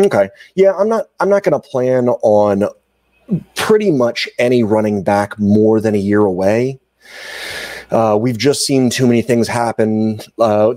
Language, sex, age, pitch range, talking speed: English, male, 30-49, 105-145 Hz, 155 wpm